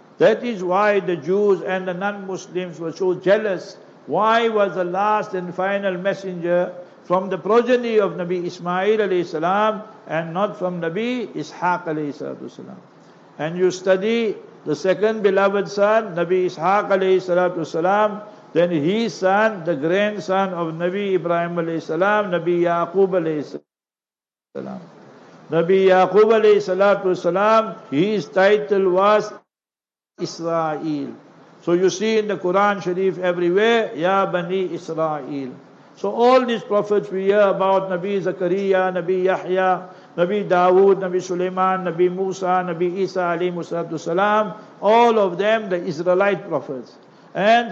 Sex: male